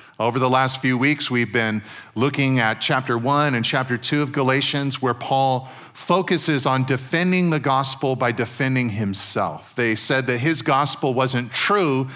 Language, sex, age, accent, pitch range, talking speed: English, male, 40-59, American, 125-155 Hz, 165 wpm